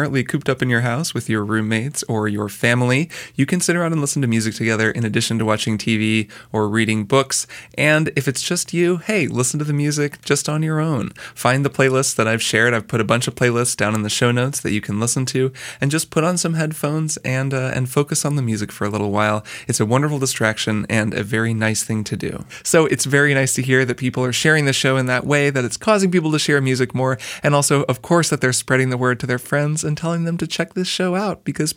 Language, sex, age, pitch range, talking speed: English, male, 20-39, 125-150 Hz, 255 wpm